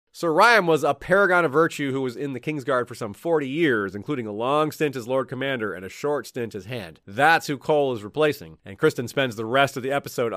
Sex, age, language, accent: male, 30-49, English, American